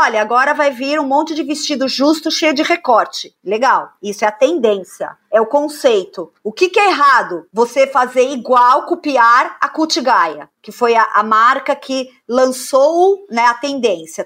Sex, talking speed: female, 175 wpm